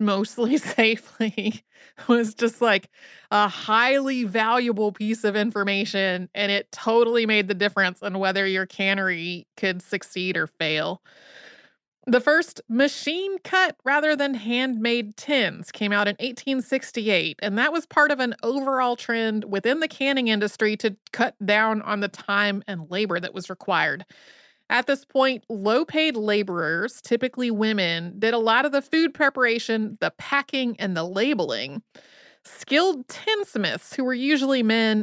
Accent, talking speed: American, 145 wpm